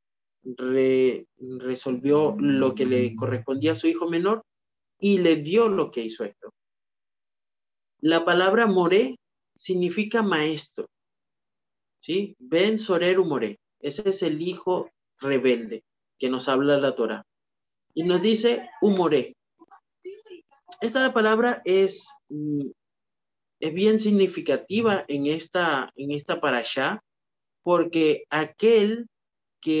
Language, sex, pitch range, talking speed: Spanish, male, 140-210 Hz, 110 wpm